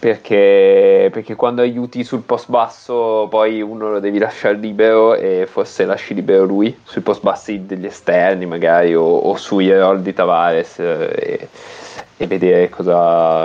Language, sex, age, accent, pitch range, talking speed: Italian, male, 20-39, native, 105-150 Hz, 150 wpm